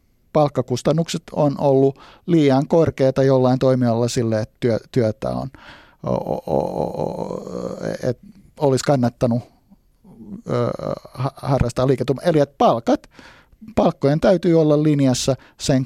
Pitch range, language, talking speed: 125-150 Hz, Finnish, 75 wpm